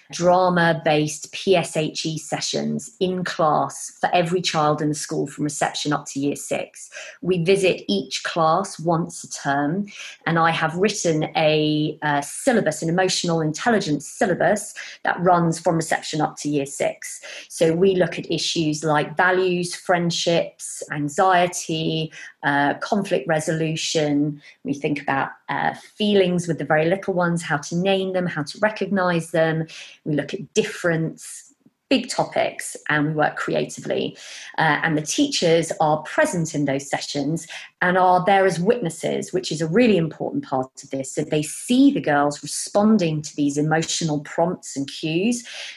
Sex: female